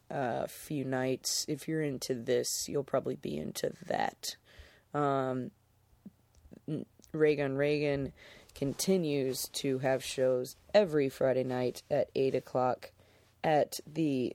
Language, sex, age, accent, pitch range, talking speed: English, female, 20-39, American, 130-155 Hz, 115 wpm